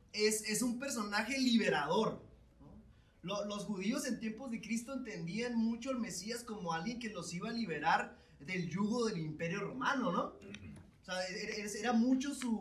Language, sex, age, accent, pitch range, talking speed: Spanish, male, 20-39, Mexican, 195-250 Hz, 165 wpm